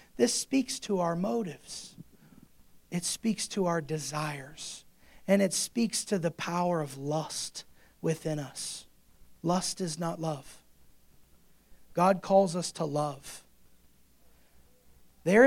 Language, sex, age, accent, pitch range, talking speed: English, male, 40-59, American, 170-265 Hz, 115 wpm